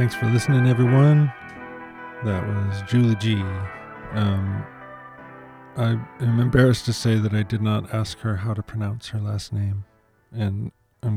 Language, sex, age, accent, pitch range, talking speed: English, male, 40-59, American, 100-115 Hz, 150 wpm